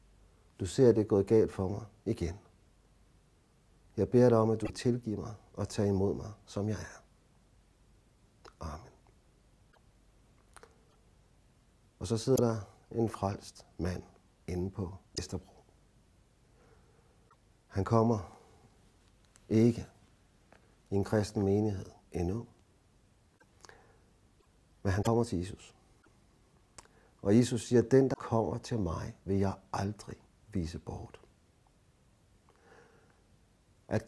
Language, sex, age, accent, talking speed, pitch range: Danish, male, 60-79, native, 110 wpm, 95-110 Hz